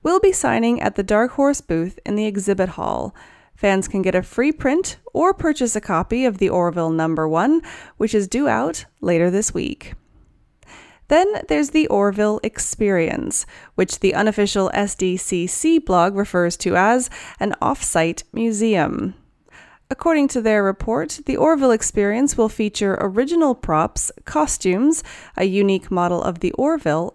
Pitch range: 180-270 Hz